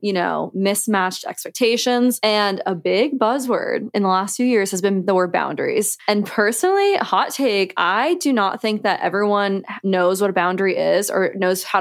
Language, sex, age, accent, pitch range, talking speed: English, female, 20-39, American, 190-240 Hz, 185 wpm